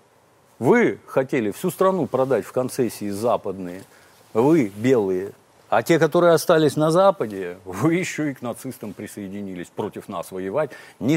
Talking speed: 140 wpm